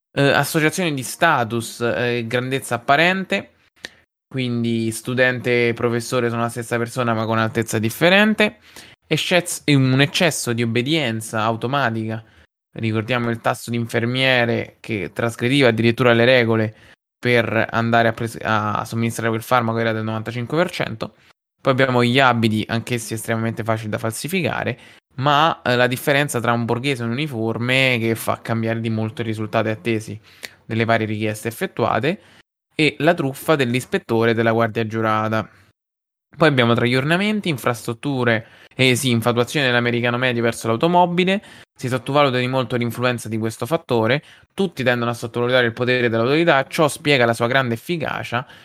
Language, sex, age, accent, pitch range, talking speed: Italian, male, 20-39, native, 115-135 Hz, 145 wpm